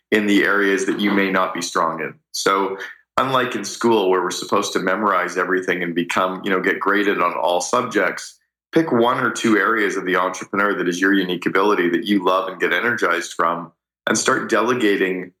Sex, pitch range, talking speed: male, 90-105 Hz, 205 wpm